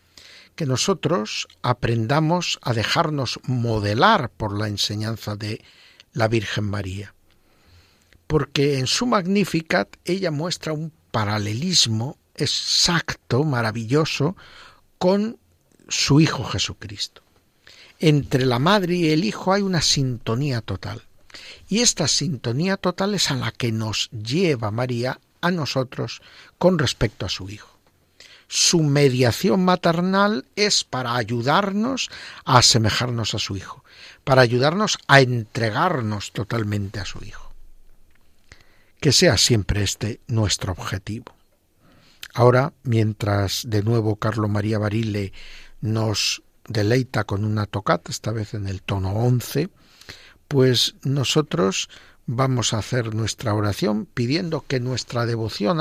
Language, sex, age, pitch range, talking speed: Spanish, male, 60-79, 105-155 Hz, 115 wpm